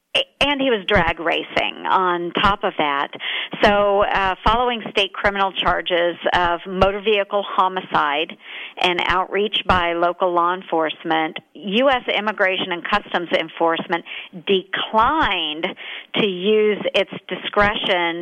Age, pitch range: 50-69, 175-205 Hz